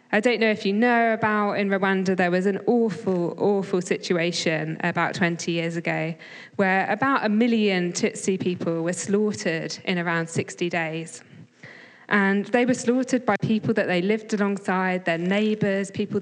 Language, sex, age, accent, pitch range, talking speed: English, female, 20-39, British, 175-215 Hz, 165 wpm